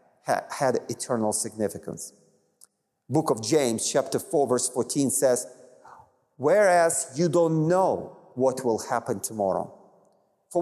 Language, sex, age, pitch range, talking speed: English, male, 40-59, 125-175 Hz, 115 wpm